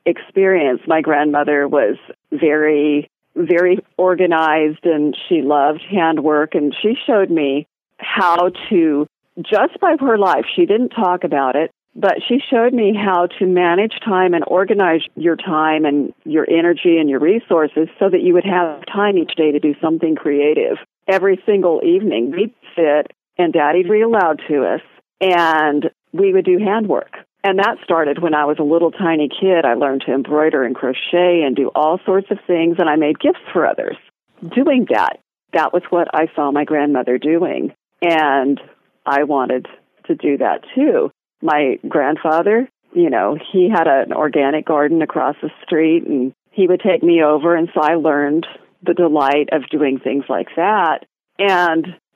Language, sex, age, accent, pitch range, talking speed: English, female, 50-69, American, 150-190 Hz, 170 wpm